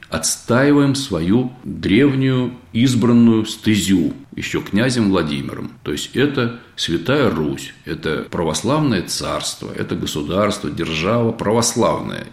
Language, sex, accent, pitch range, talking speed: Russian, male, native, 85-120 Hz, 95 wpm